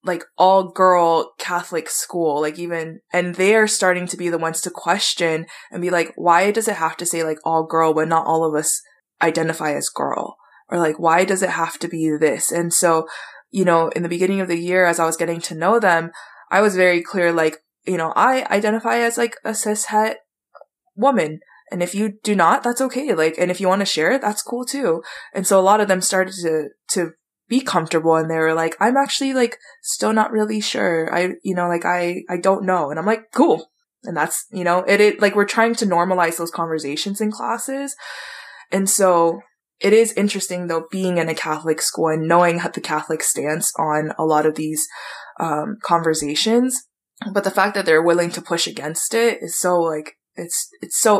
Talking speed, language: 215 wpm, English